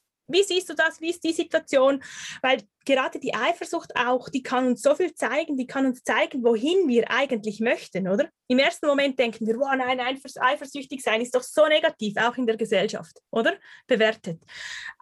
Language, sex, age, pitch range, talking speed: German, female, 20-39, 240-315 Hz, 195 wpm